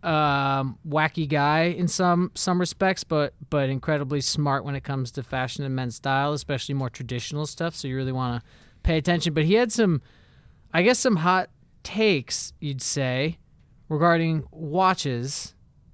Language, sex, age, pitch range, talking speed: English, male, 30-49, 130-175 Hz, 160 wpm